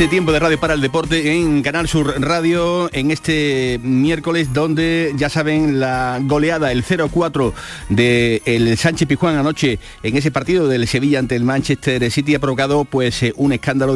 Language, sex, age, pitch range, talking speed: Spanish, male, 40-59, 120-145 Hz, 170 wpm